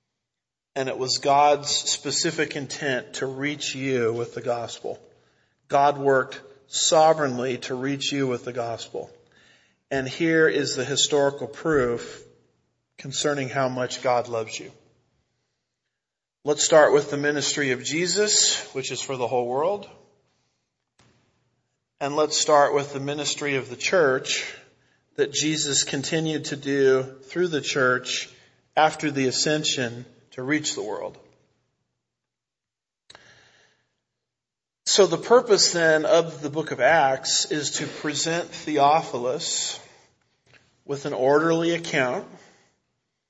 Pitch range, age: 125-150 Hz, 40-59